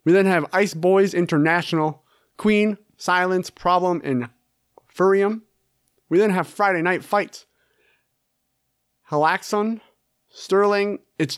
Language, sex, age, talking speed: English, male, 30-49, 105 wpm